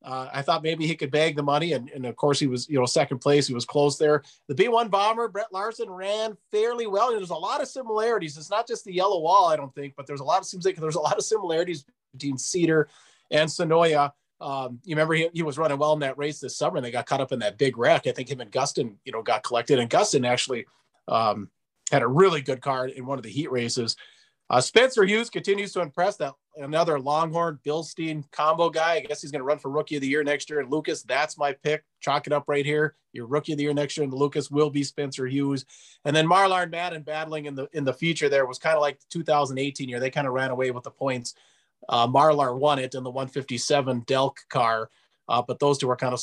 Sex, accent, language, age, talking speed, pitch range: male, American, English, 30-49, 260 wpm, 135-170 Hz